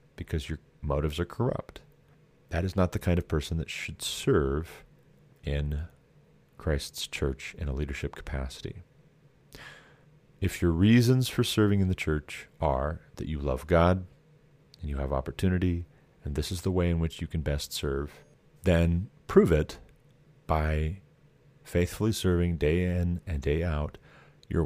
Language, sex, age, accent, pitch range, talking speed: English, male, 40-59, American, 75-95 Hz, 150 wpm